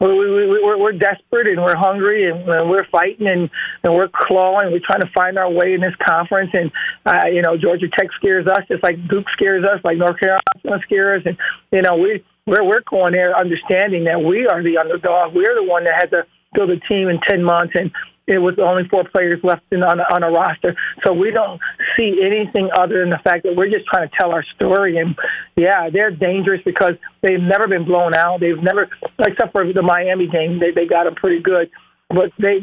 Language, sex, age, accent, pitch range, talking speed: English, male, 50-69, American, 175-195 Hz, 225 wpm